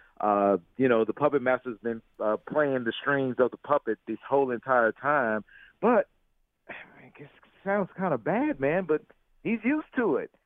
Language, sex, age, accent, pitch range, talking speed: English, male, 40-59, American, 135-210 Hz, 170 wpm